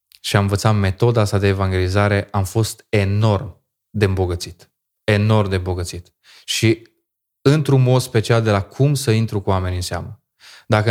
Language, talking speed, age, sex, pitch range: Romanian, 160 wpm, 20-39, male, 105-125 Hz